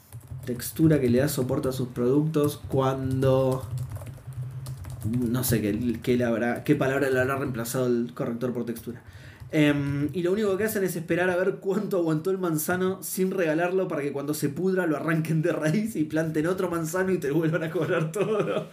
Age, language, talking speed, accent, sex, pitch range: 20-39, Spanish, 190 wpm, Argentinian, male, 130-190 Hz